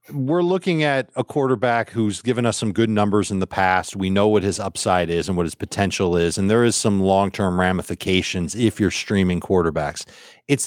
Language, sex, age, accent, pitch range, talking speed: English, male, 40-59, American, 95-115 Hz, 200 wpm